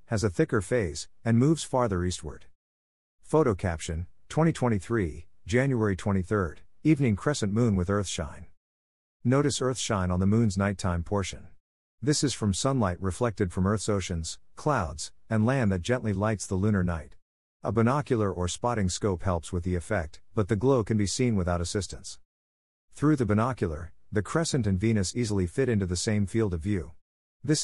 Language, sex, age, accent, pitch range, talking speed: English, male, 50-69, American, 90-115 Hz, 165 wpm